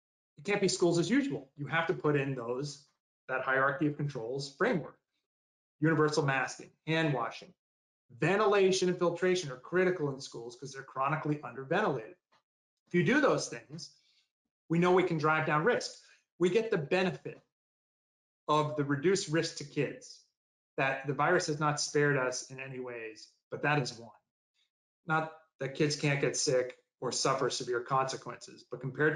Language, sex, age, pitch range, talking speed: English, male, 30-49, 130-165 Hz, 165 wpm